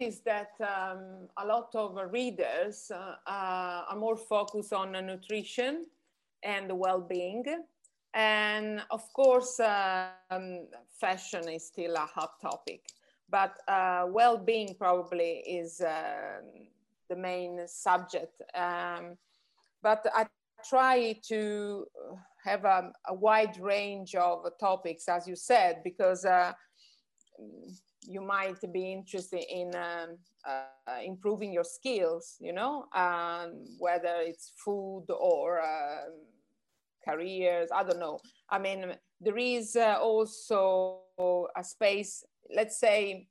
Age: 30-49